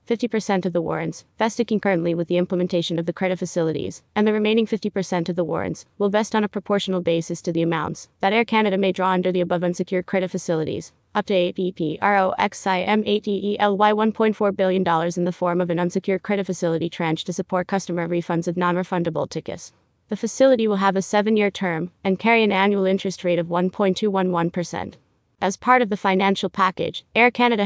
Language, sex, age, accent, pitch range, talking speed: English, female, 30-49, American, 180-210 Hz, 180 wpm